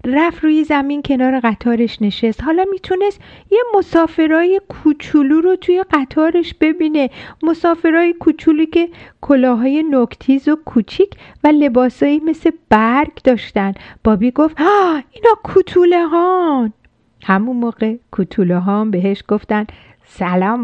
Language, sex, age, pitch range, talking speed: Persian, female, 50-69, 230-330 Hz, 115 wpm